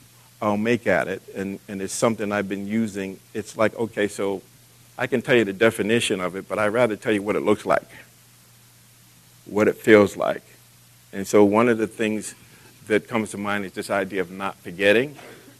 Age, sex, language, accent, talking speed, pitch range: 50-69, male, English, American, 205 wpm, 90-110 Hz